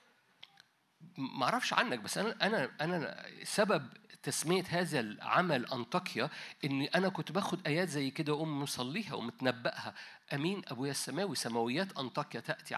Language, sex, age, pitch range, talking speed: Arabic, male, 50-69, 135-195 Hz, 125 wpm